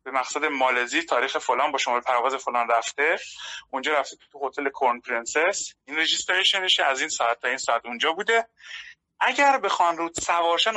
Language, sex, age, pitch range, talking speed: Persian, male, 30-49, 125-170 Hz, 175 wpm